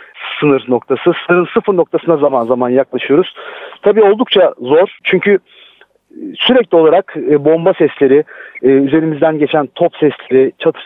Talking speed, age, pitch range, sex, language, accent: 125 wpm, 40-59, 140-175 Hz, male, Turkish, native